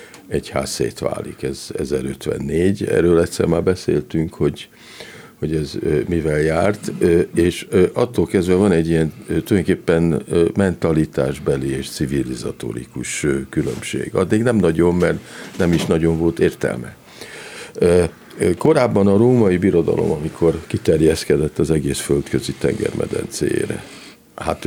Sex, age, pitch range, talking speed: male, 50-69, 75-85 Hz, 110 wpm